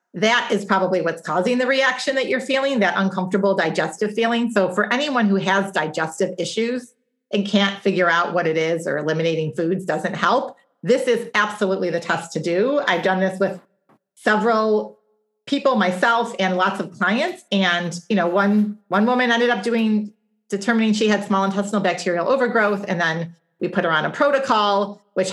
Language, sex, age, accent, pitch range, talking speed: English, female, 40-59, American, 185-230 Hz, 180 wpm